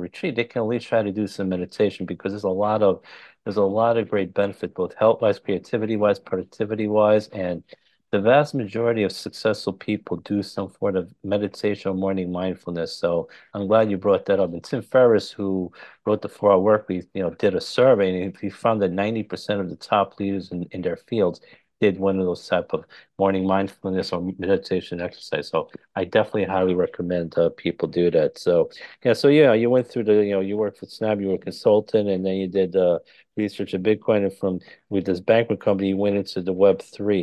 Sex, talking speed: male, 220 wpm